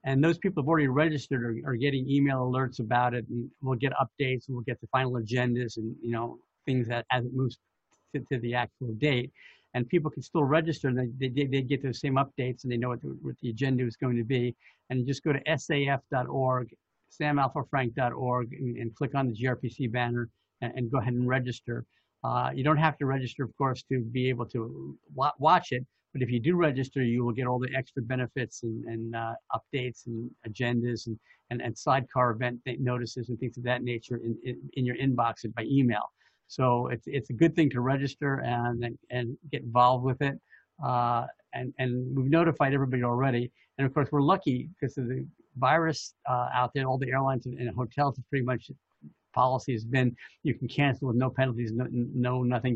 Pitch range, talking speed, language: 120-135 Hz, 210 wpm, English